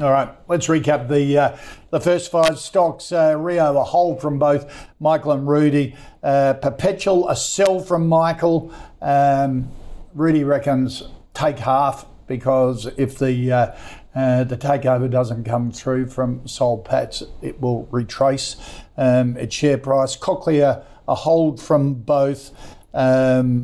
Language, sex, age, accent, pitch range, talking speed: English, male, 60-79, Australian, 125-150 Hz, 140 wpm